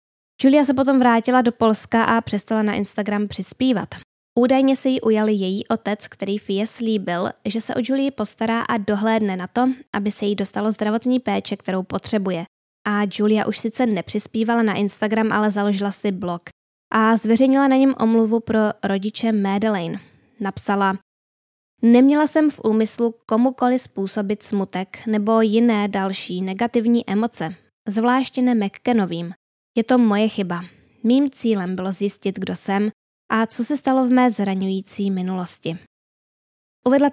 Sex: female